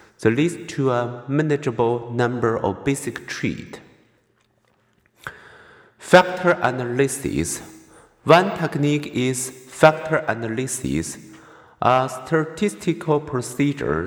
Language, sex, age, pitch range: Chinese, male, 50-69, 115-145 Hz